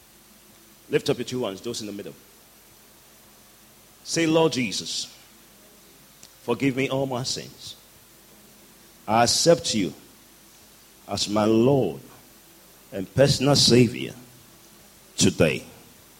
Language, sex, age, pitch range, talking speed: English, male, 40-59, 100-130 Hz, 100 wpm